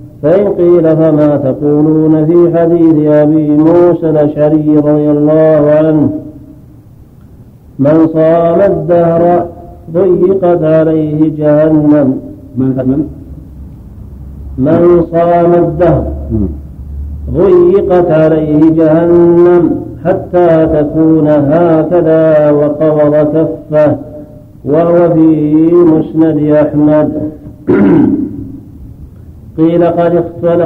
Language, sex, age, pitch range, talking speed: Arabic, male, 50-69, 150-170 Hz, 70 wpm